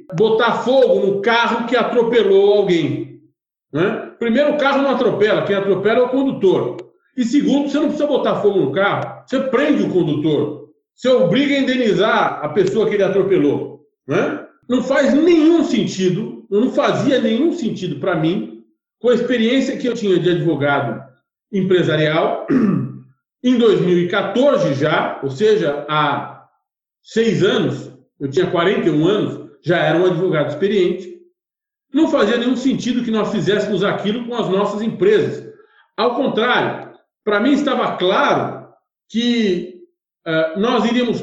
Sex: male